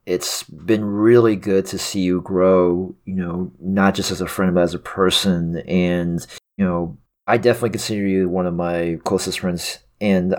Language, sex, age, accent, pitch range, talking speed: English, male, 30-49, American, 90-110 Hz, 185 wpm